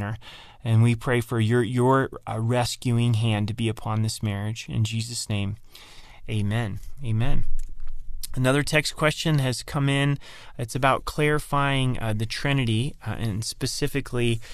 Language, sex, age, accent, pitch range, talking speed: English, male, 30-49, American, 110-130 Hz, 140 wpm